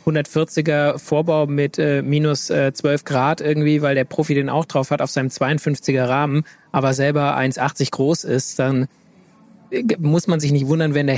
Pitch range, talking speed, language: 135-155 Hz, 175 wpm, German